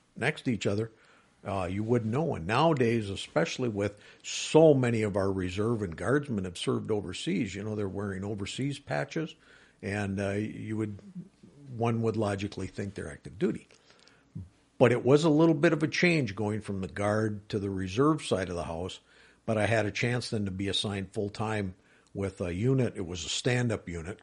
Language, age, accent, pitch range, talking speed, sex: English, 50-69, American, 95-120 Hz, 190 wpm, male